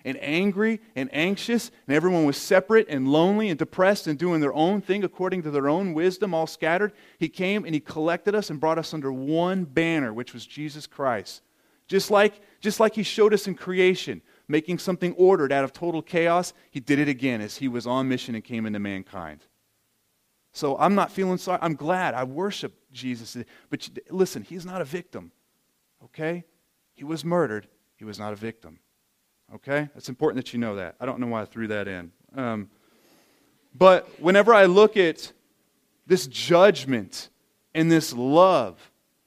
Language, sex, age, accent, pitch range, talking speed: English, male, 30-49, American, 140-195 Hz, 185 wpm